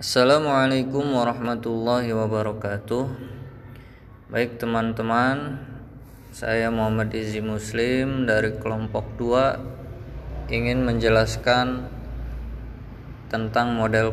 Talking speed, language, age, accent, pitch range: 70 wpm, Indonesian, 20-39, native, 110-130 Hz